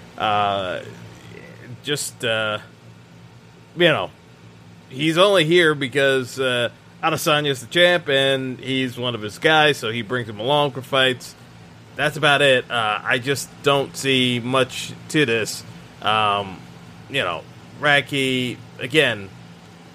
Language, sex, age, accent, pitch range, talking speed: English, male, 20-39, American, 115-140 Hz, 125 wpm